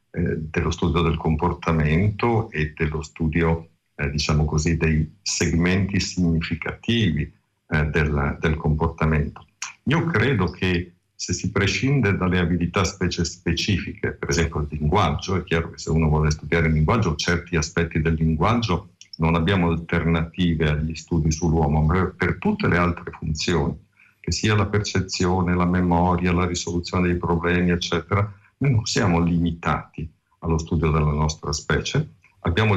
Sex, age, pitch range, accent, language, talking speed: male, 50-69, 80-100 Hz, native, Italian, 140 wpm